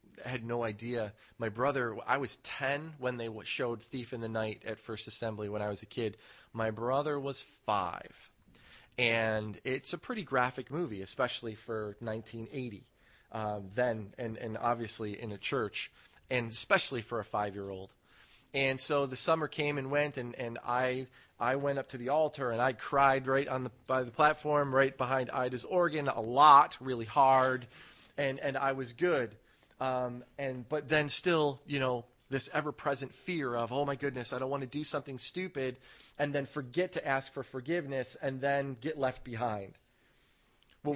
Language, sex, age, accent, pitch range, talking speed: English, male, 30-49, American, 115-140 Hz, 175 wpm